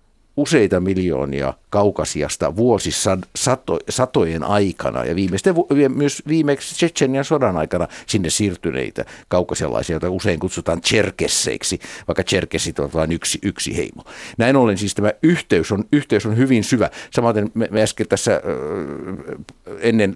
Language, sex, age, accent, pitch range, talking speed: Finnish, male, 60-79, native, 90-110 Hz, 130 wpm